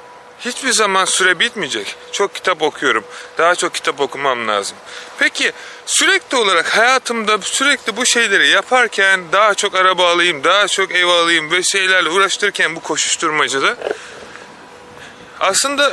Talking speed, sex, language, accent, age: 130 wpm, male, Turkish, native, 30-49